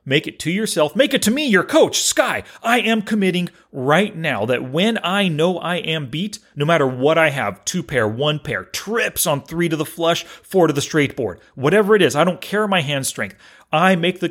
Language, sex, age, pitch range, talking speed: English, male, 40-59, 125-175 Hz, 230 wpm